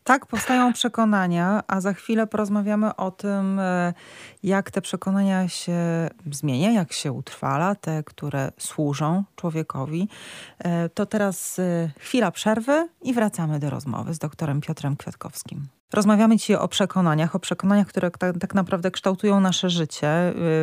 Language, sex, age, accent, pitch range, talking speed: Polish, female, 30-49, native, 165-205 Hz, 135 wpm